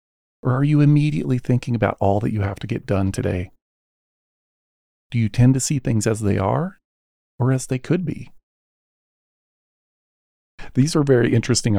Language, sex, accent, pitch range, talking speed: English, male, American, 95-125 Hz, 165 wpm